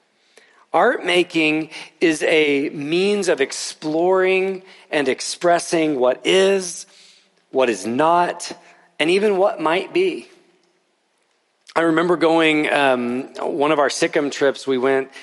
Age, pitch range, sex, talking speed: 40-59, 125-165 Hz, male, 120 wpm